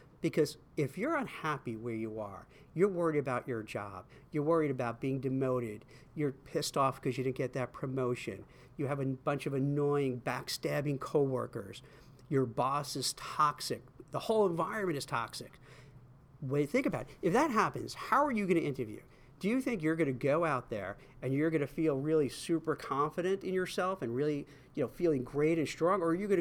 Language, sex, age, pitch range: English, male, 50-69, 130-170 Hz